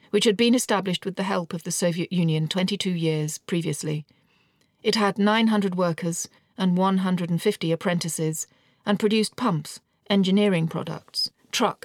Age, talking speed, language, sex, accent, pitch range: 40-59, 135 wpm, English, female, British, 165-205 Hz